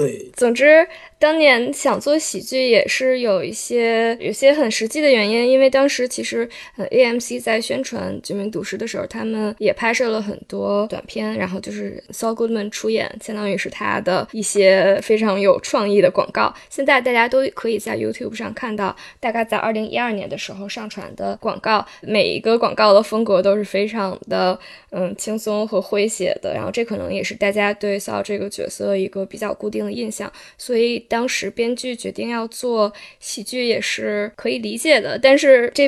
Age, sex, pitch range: 10-29, female, 200-240 Hz